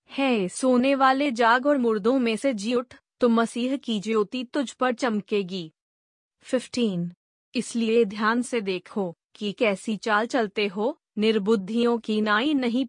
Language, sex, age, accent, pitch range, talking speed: Hindi, female, 30-49, native, 210-250 Hz, 145 wpm